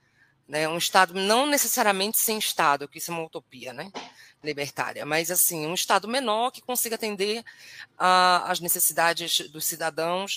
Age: 20-39